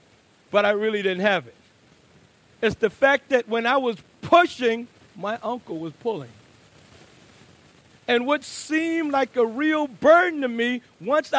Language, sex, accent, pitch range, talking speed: English, male, American, 175-265 Hz, 150 wpm